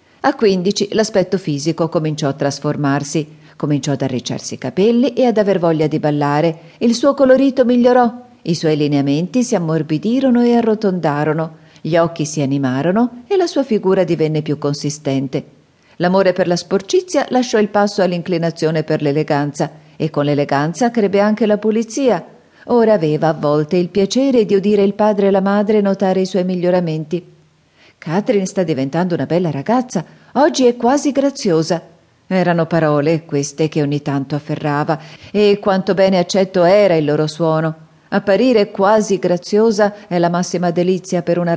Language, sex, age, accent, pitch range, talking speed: Italian, female, 40-59, native, 155-200 Hz, 155 wpm